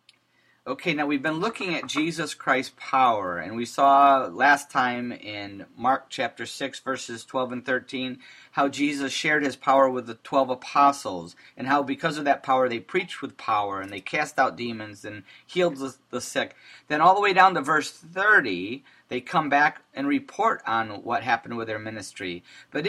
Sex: male